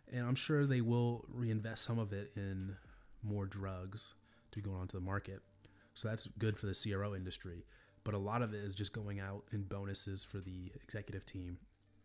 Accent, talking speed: American, 195 wpm